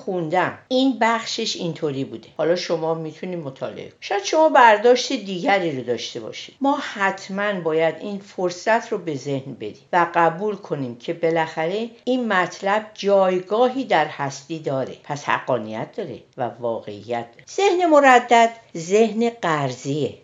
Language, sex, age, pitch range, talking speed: Persian, female, 50-69, 145-230 Hz, 135 wpm